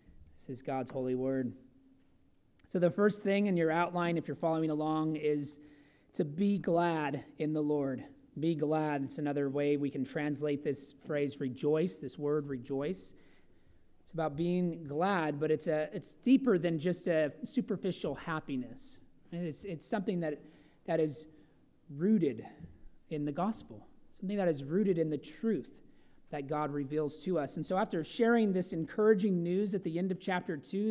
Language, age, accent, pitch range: English, 30-49, American, 145-180 Hz